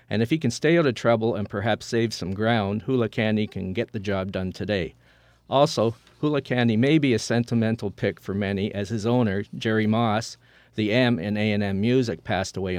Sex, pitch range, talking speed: male, 100-120 Hz, 200 wpm